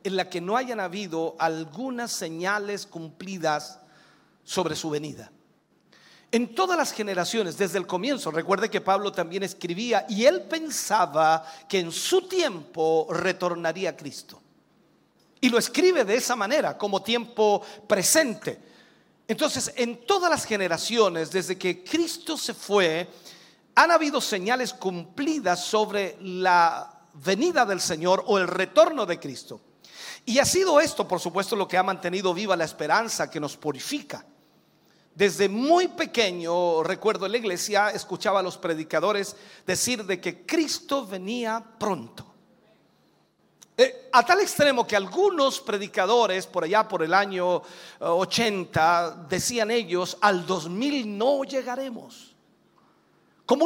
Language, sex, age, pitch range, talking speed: Spanish, male, 50-69, 180-255 Hz, 135 wpm